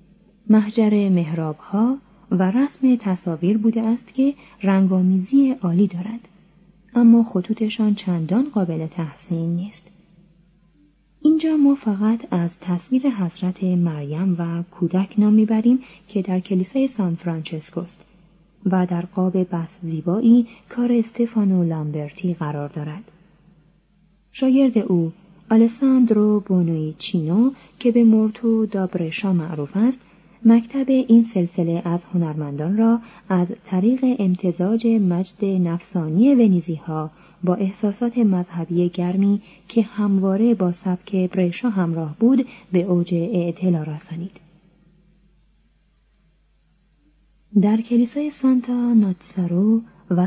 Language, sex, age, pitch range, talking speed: Persian, female, 30-49, 175-225 Hz, 105 wpm